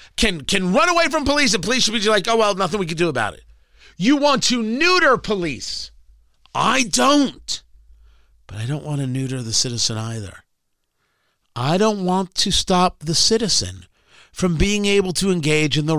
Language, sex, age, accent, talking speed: English, male, 50-69, American, 185 wpm